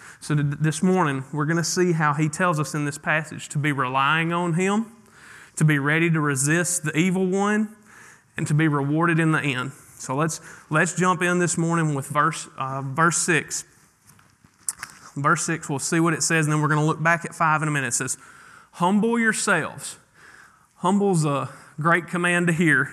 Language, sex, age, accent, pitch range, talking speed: English, male, 30-49, American, 150-190 Hz, 195 wpm